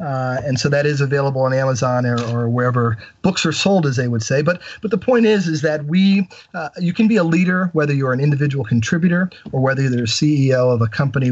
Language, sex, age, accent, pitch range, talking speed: English, male, 40-59, American, 130-165 Hz, 240 wpm